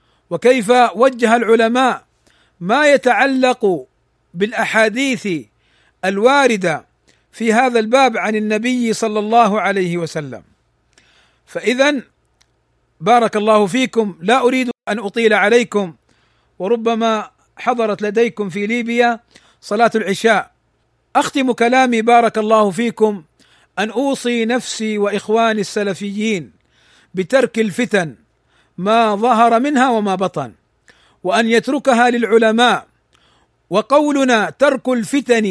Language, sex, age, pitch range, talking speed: Arabic, male, 50-69, 205-250 Hz, 95 wpm